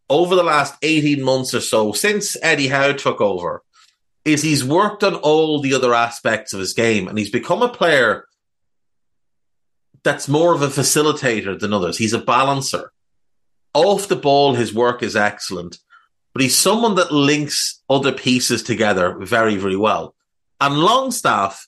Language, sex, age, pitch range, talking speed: English, male, 30-49, 115-170 Hz, 160 wpm